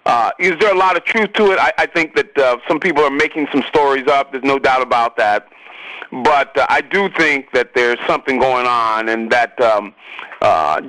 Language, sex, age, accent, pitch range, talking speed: English, male, 40-59, American, 130-180 Hz, 220 wpm